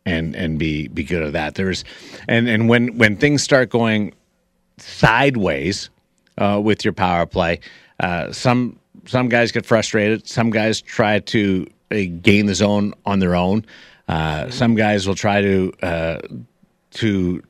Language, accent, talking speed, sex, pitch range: English, American, 160 wpm, male, 95-115 Hz